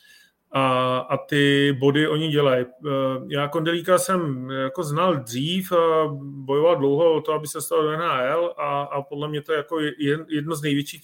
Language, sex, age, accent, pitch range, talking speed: Czech, male, 30-49, native, 130-145 Hz, 170 wpm